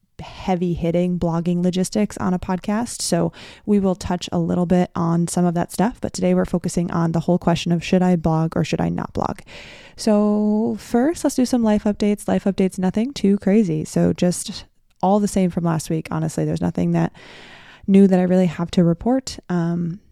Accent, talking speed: American, 205 wpm